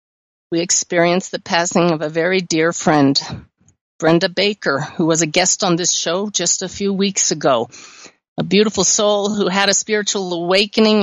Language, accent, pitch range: English, American, 170-215 Hz